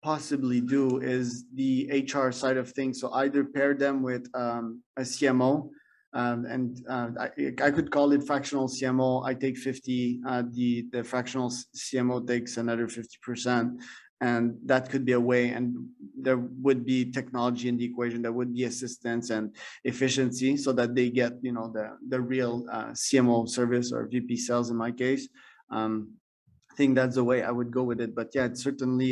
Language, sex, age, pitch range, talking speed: English, male, 20-39, 120-130 Hz, 180 wpm